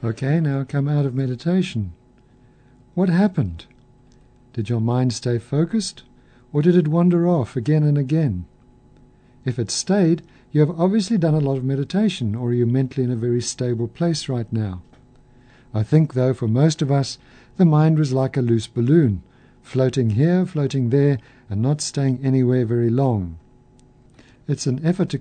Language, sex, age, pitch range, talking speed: English, male, 60-79, 125-150 Hz, 170 wpm